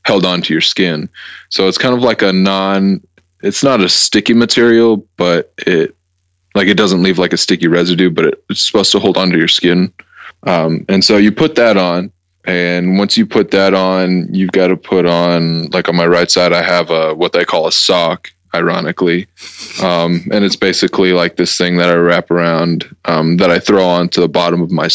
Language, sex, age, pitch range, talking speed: English, male, 20-39, 85-95 Hz, 205 wpm